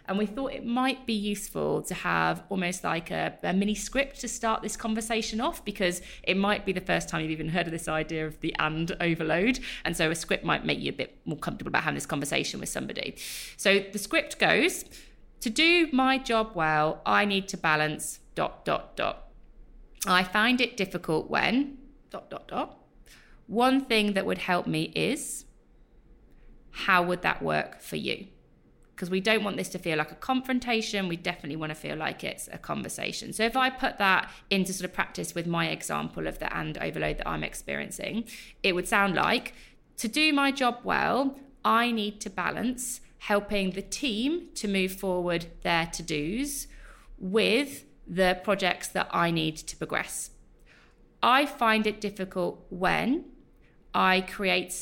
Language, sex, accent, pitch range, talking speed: English, female, British, 175-240 Hz, 180 wpm